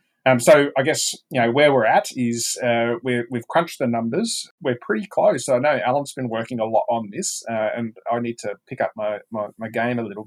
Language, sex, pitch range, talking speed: English, male, 115-145 Hz, 245 wpm